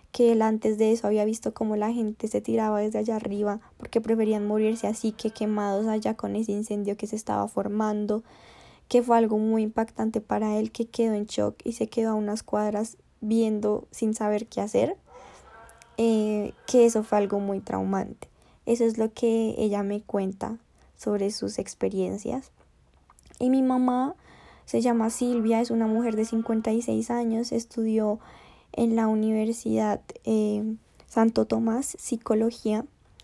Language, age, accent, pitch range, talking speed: Spanish, 10-29, Colombian, 210-230 Hz, 160 wpm